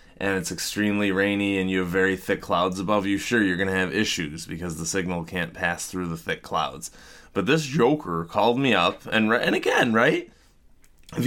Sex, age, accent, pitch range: male, 30-49, American, 105-155 Hz